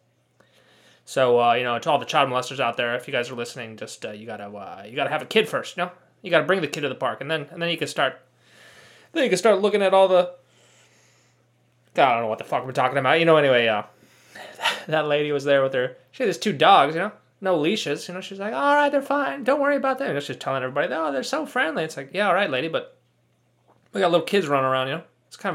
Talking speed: 275 wpm